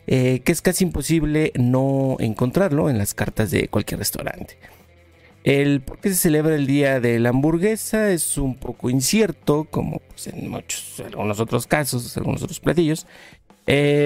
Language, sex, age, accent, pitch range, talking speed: Spanish, male, 50-69, Mexican, 115-155 Hz, 160 wpm